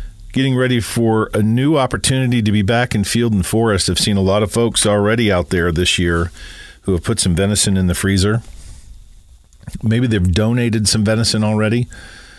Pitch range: 85-110 Hz